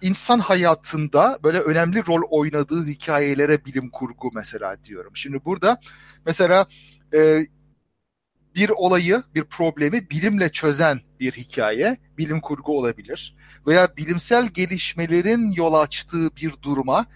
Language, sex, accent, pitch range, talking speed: Turkish, male, native, 140-185 Hz, 115 wpm